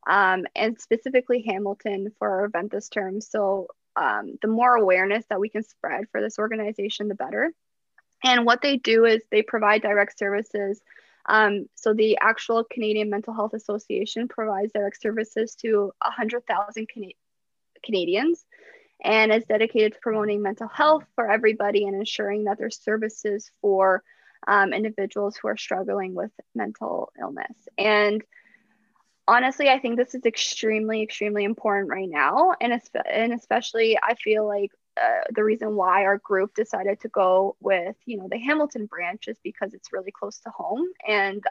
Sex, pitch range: female, 205-230 Hz